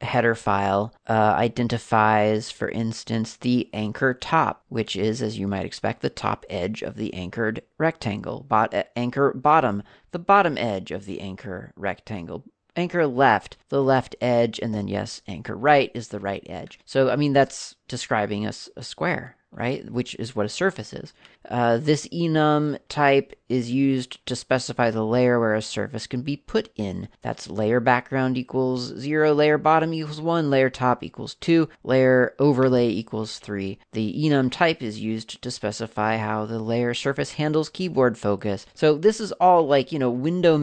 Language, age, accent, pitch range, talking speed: English, 30-49, American, 110-140 Hz, 175 wpm